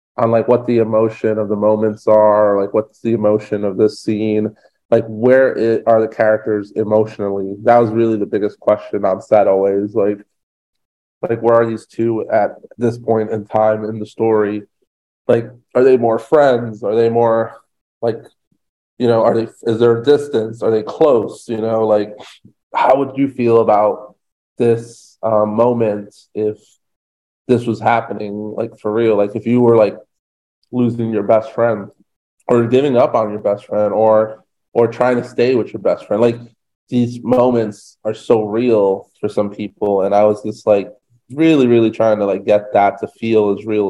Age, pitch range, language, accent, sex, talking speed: 20-39, 105-120 Hz, English, American, male, 180 wpm